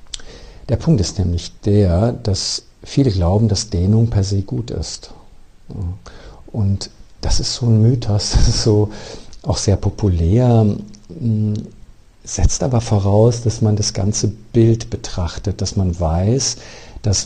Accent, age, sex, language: German, 50-69, male, German